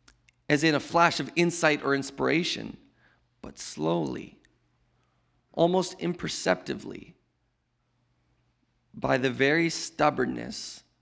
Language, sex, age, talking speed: English, male, 30-49, 85 wpm